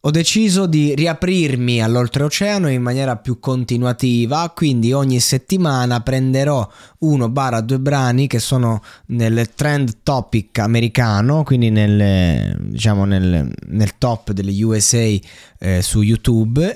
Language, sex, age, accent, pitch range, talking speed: Italian, male, 20-39, native, 115-145 Hz, 115 wpm